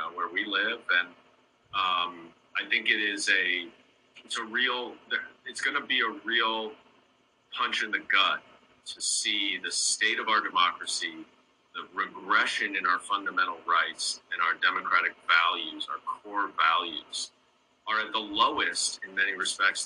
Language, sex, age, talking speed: English, male, 40-59, 150 wpm